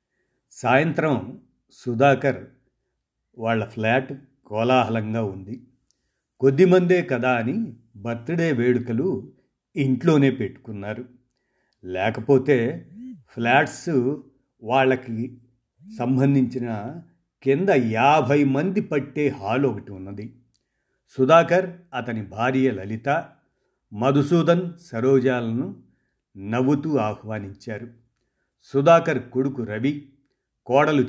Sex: male